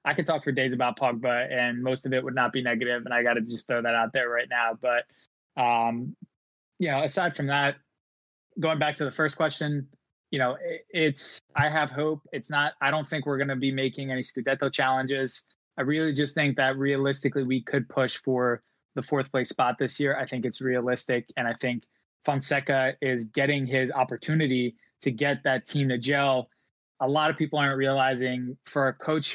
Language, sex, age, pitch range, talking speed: English, male, 20-39, 130-150 Hz, 205 wpm